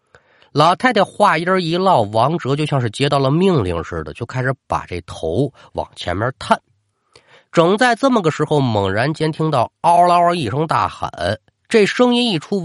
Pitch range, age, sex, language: 105-175 Hz, 30-49, male, Chinese